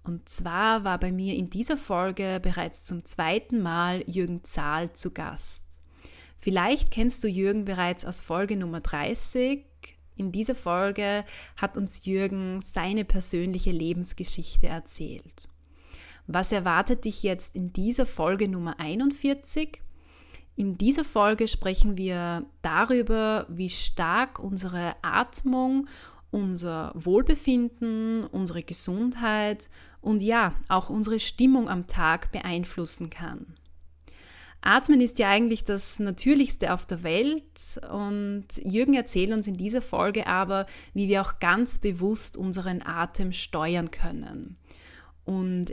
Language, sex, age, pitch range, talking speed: German, female, 30-49, 175-220 Hz, 125 wpm